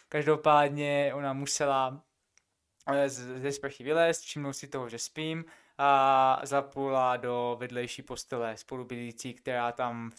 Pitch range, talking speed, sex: 125-140 Hz, 120 wpm, male